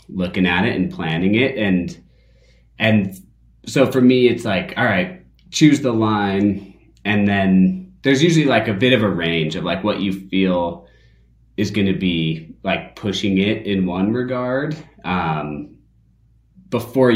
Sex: male